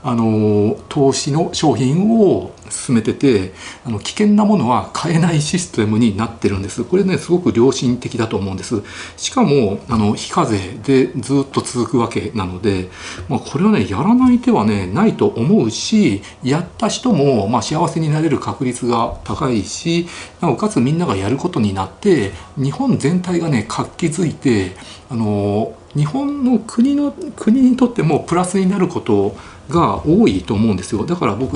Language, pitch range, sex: Japanese, 105-165 Hz, male